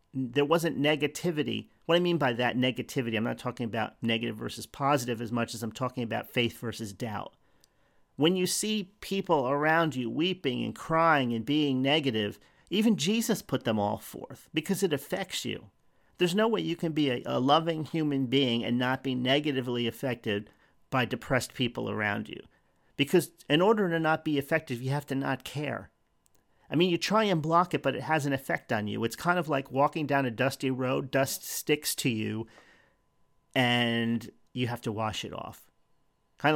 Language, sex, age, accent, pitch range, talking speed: English, male, 40-59, American, 120-160 Hz, 190 wpm